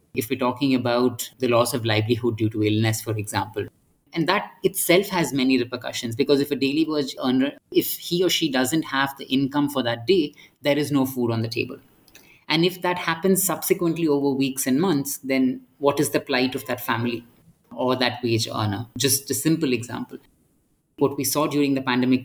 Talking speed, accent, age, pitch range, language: 200 wpm, Indian, 30-49, 125-160 Hz, English